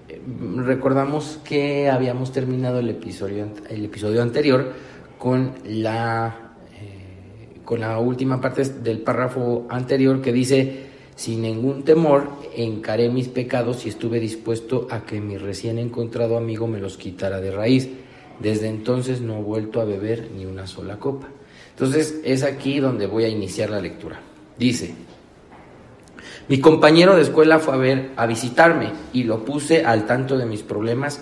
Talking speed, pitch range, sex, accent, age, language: 145 wpm, 110-130 Hz, male, Mexican, 40-59, Spanish